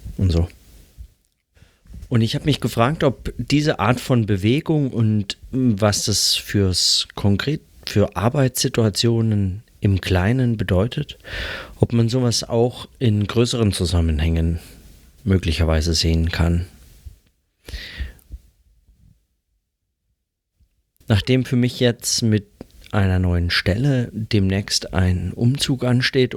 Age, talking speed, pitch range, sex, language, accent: 40-59, 100 wpm, 85-115 Hz, male, German, German